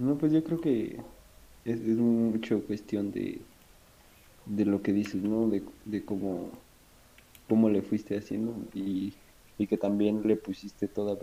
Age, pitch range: 20-39, 100-110 Hz